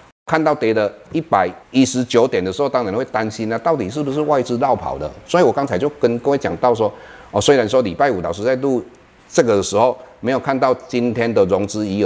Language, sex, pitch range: Chinese, male, 115-165 Hz